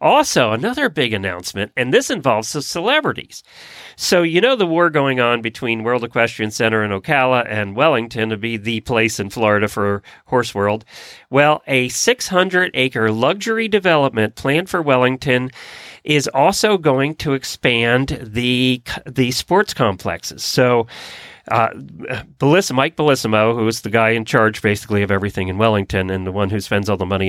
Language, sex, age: English, male, 40-59